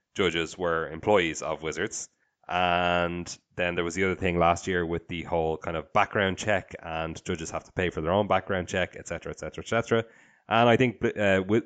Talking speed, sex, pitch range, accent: 195 wpm, male, 85-105 Hz, Irish